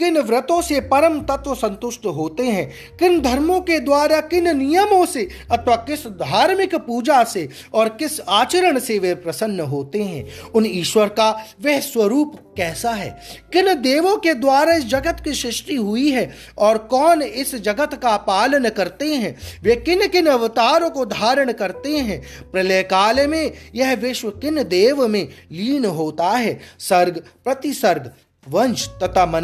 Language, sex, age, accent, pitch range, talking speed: Hindi, male, 30-49, native, 210-295 Hz, 155 wpm